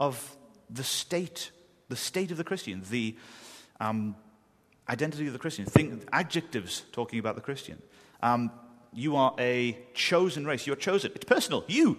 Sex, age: male, 30-49